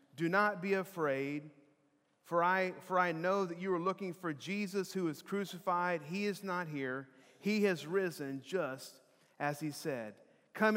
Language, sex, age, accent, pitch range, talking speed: English, male, 40-59, American, 150-185 Hz, 165 wpm